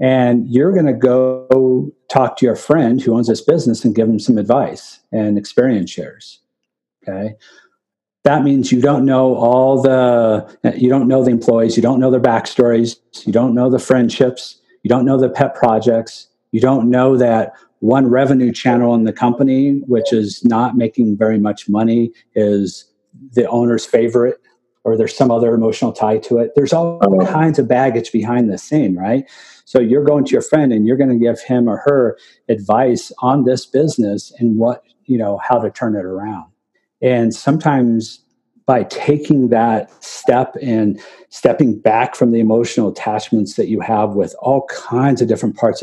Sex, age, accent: male, 50-69, American